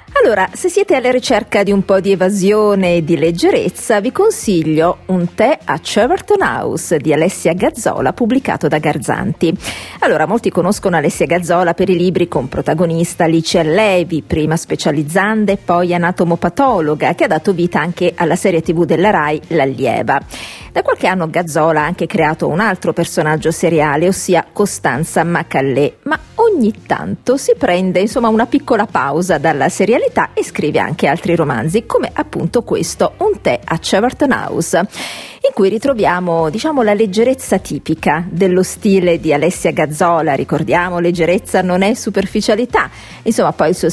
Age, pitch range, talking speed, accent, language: 40-59, 165-220 Hz, 155 wpm, native, Italian